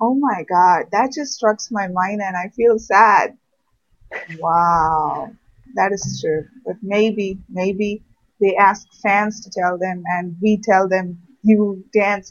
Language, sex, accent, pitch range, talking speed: English, female, Indian, 185-225 Hz, 150 wpm